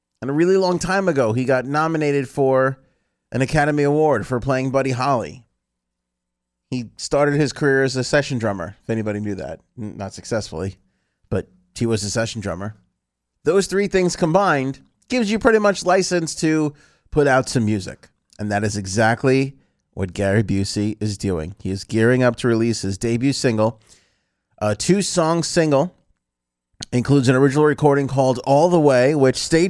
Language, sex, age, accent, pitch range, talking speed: English, male, 30-49, American, 100-140 Hz, 165 wpm